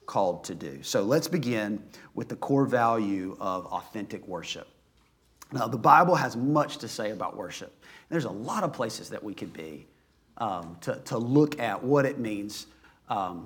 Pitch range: 115-155 Hz